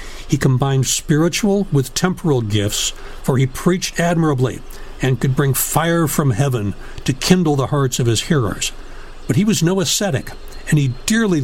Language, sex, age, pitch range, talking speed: English, male, 60-79, 120-160 Hz, 165 wpm